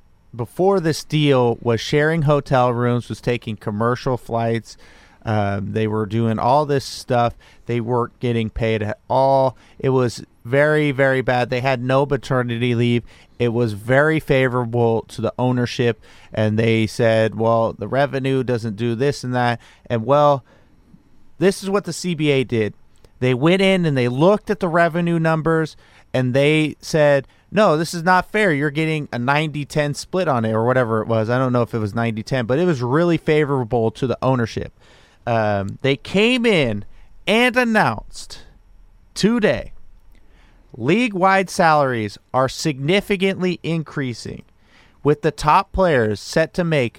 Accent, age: American, 30-49